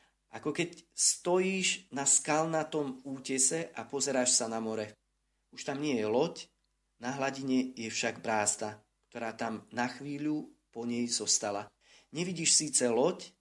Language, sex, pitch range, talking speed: Slovak, male, 120-155 Hz, 140 wpm